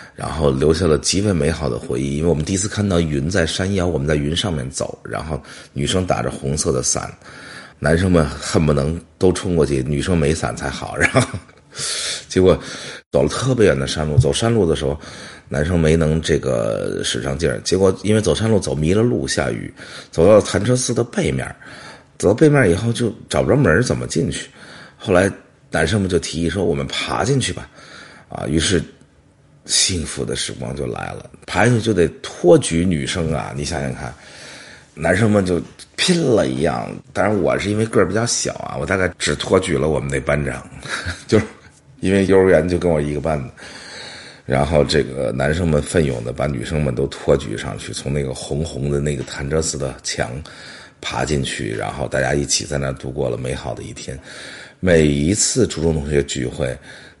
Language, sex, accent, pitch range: English, male, Chinese, 70-95 Hz